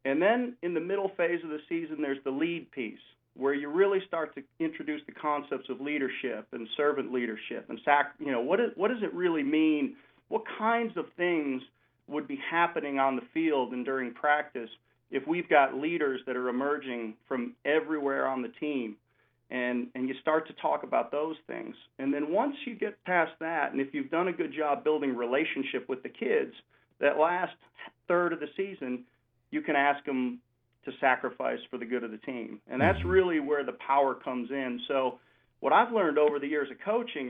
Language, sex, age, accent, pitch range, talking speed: English, male, 40-59, American, 130-180 Hz, 205 wpm